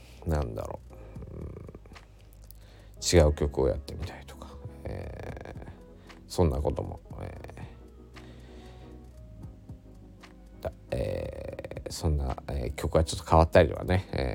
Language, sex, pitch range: Japanese, male, 75-105 Hz